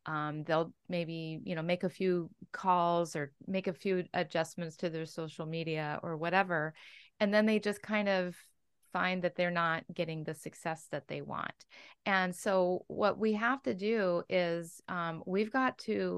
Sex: female